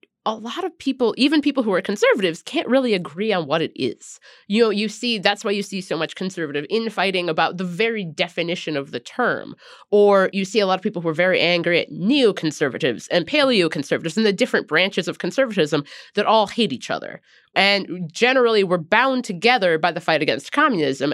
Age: 30-49